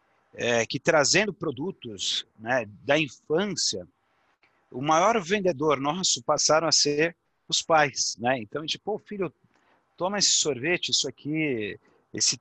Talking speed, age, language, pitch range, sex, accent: 125 wpm, 40-59, Portuguese, 115-150 Hz, male, Brazilian